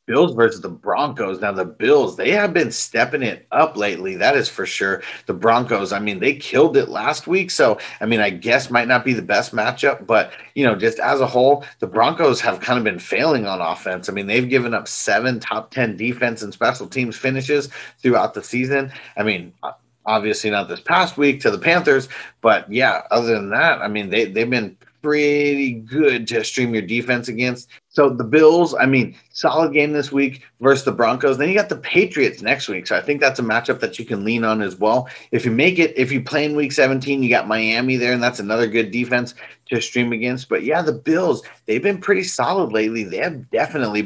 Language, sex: English, male